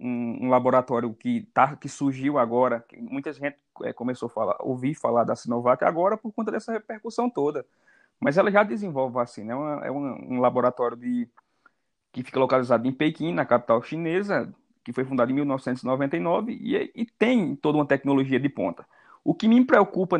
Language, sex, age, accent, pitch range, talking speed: Portuguese, male, 20-39, Brazilian, 130-195 Hz, 180 wpm